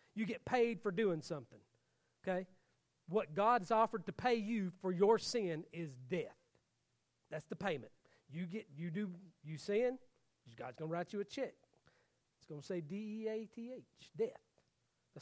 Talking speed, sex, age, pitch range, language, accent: 160 wpm, male, 40-59, 155-235 Hz, English, American